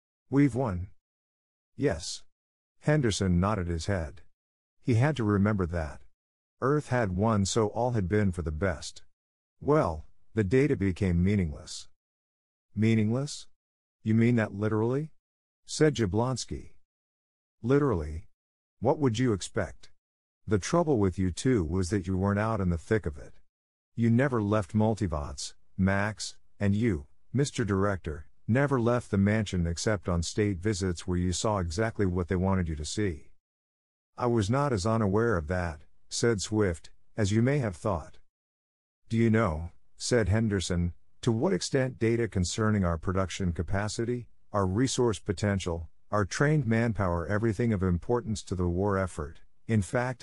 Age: 50-69